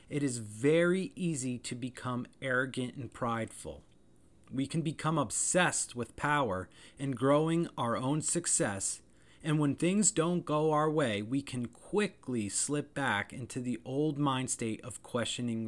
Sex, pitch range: male, 110-150 Hz